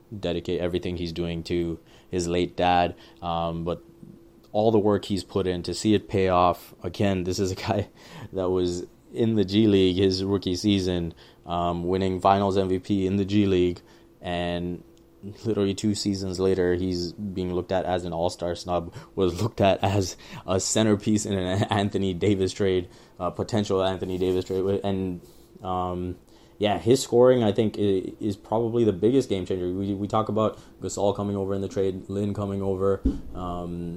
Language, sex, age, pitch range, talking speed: English, male, 20-39, 90-100 Hz, 175 wpm